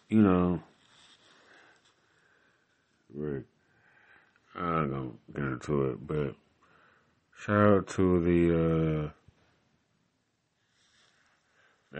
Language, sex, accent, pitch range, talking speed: English, male, American, 80-90 Hz, 75 wpm